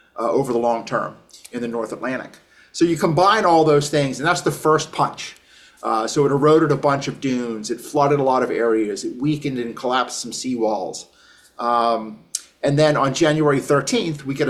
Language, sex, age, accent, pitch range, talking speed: English, male, 30-49, American, 120-150 Hz, 195 wpm